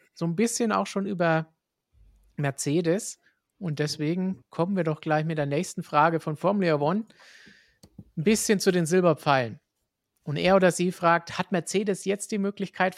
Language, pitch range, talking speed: German, 145-170 Hz, 160 wpm